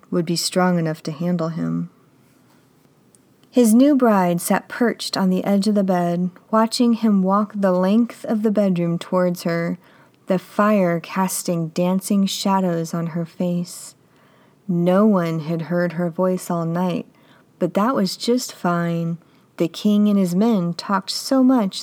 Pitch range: 170-210 Hz